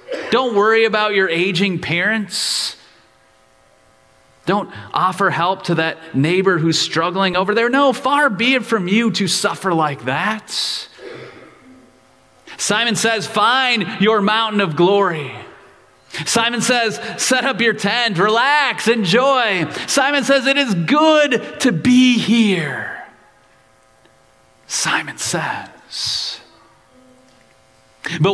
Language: English